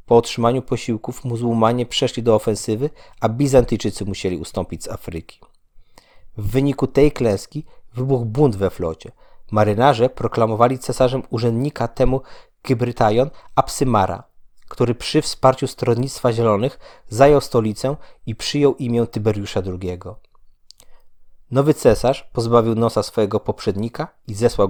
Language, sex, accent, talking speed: Polish, male, native, 115 wpm